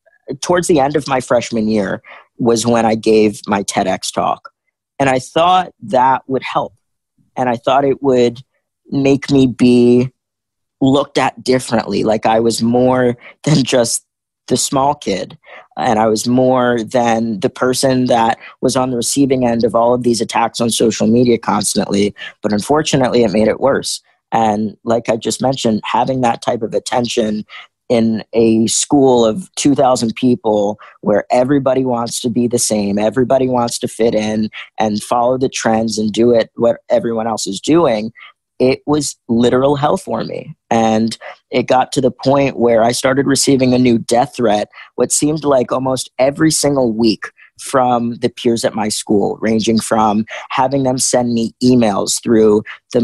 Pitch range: 110-130 Hz